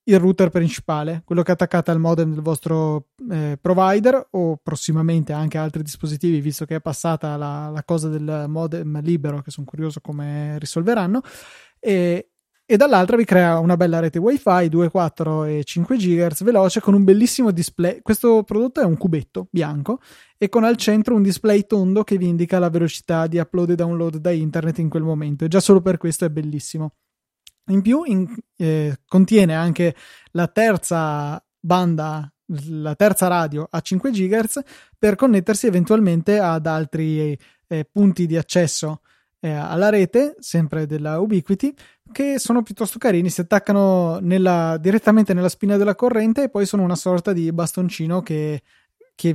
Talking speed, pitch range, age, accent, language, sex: 165 wpm, 160-200 Hz, 20-39, native, Italian, male